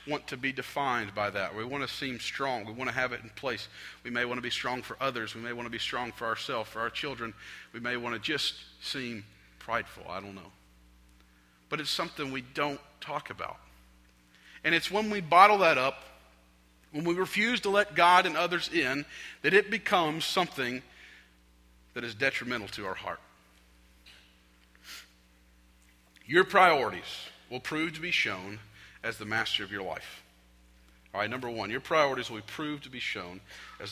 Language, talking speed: English, 185 wpm